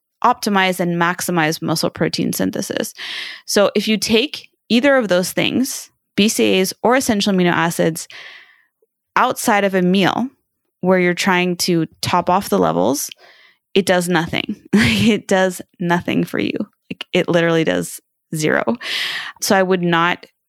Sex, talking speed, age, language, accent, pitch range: female, 140 wpm, 20-39, English, American, 170-215 Hz